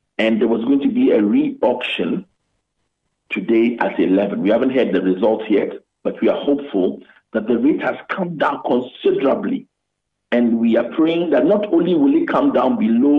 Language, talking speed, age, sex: English, 180 wpm, 50-69, male